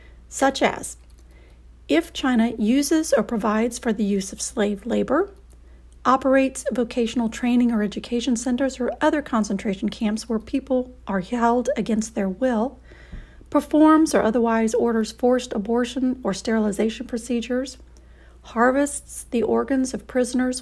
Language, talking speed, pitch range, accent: English, 130 wpm, 215-265 Hz, American